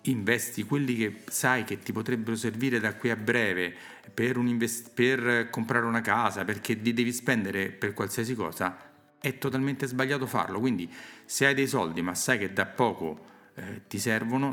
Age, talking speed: 40-59, 180 wpm